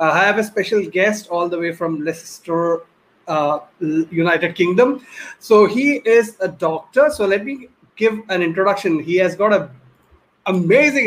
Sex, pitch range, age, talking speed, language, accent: male, 165-210 Hz, 30-49, 165 wpm, English, Indian